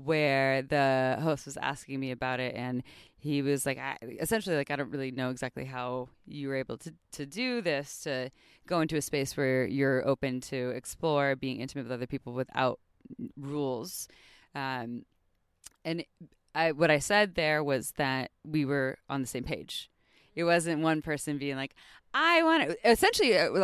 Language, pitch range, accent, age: English, 135-180 Hz, American, 20-39